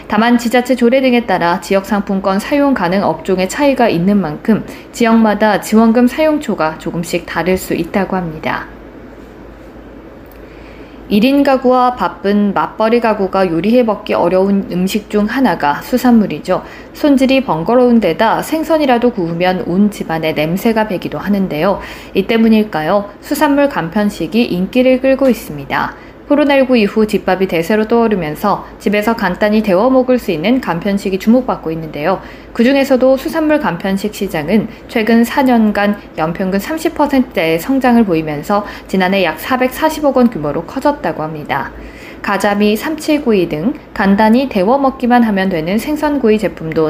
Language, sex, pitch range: Korean, female, 185-255 Hz